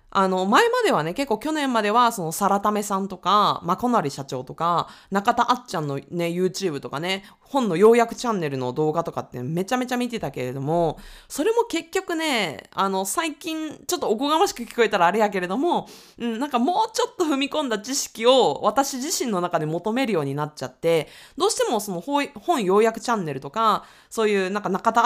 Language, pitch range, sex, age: Japanese, 180-285 Hz, female, 20-39